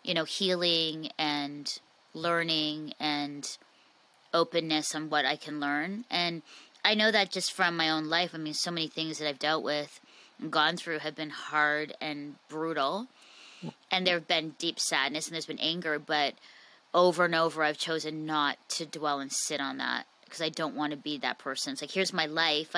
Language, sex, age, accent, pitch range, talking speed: English, female, 20-39, American, 155-170 Hz, 190 wpm